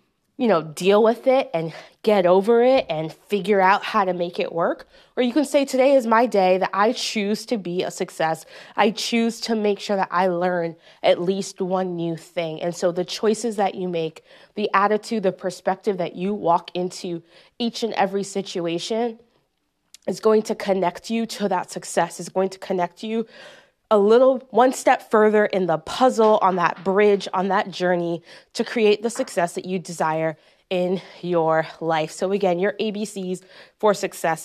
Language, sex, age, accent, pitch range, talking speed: English, female, 20-39, American, 175-215 Hz, 185 wpm